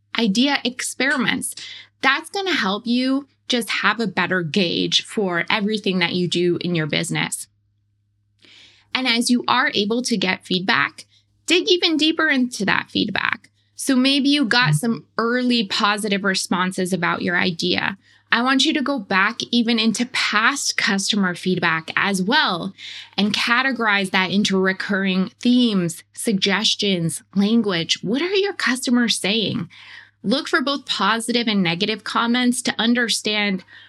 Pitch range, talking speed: 180-245 Hz, 140 wpm